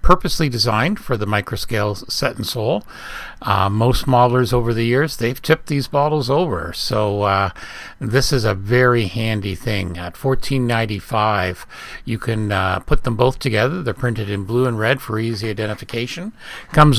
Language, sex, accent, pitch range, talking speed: English, male, American, 105-135 Hz, 165 wpm